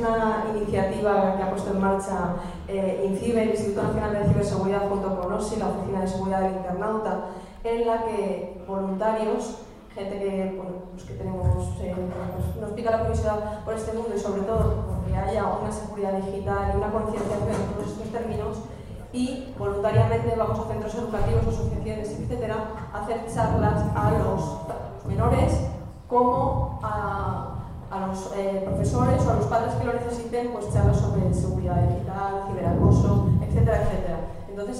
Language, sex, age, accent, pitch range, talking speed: Spanish, female, 20-39, Spanish, 190-225 Hz, 150 wpm